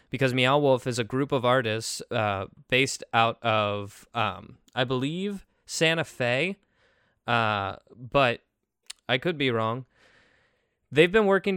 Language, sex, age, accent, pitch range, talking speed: English, male, 20-39, American, 105-135 Hz, 135 wpm